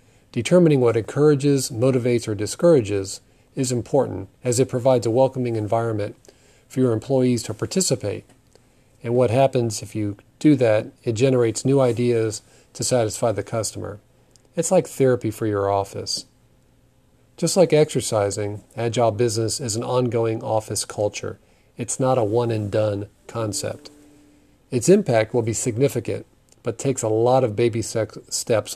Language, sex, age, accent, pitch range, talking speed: English, male, 40-59, American, 110-130 Hz, 140 wpm